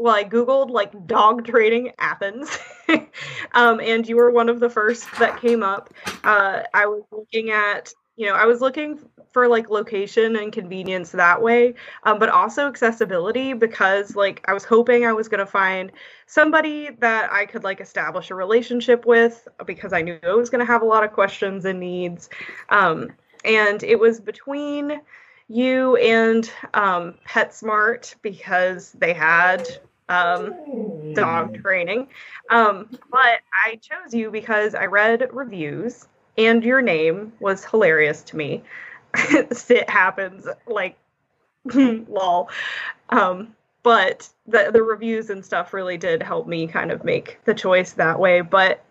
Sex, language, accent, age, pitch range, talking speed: female, English, American, 10-29, 195-245 Hz, 155 wpm